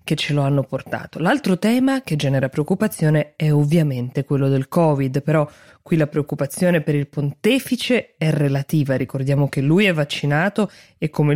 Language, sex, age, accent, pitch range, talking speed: Italian, female, 20-39, native, 145-170 Hz, 165 wpm